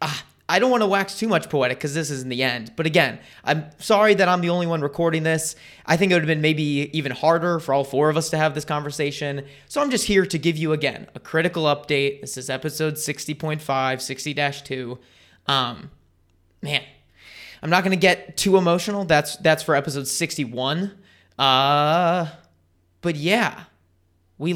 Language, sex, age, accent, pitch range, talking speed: English, male, 20-39, American, 140-170 Hz, 190 wpm